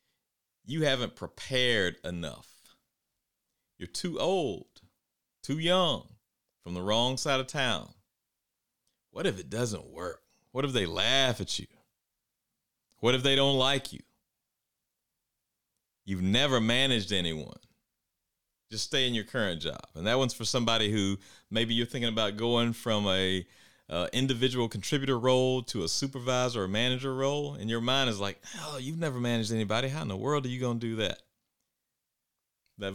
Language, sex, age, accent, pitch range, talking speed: English, male, 40-59, American, 100-130 Hz, 160 wpm